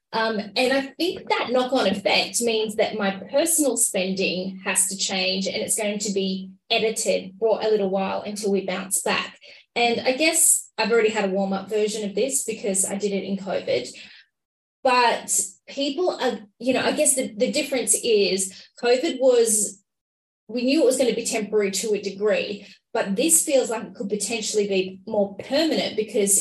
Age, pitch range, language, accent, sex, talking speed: 20-39, 200-240 Hz, English, Australian, female, 185 wpm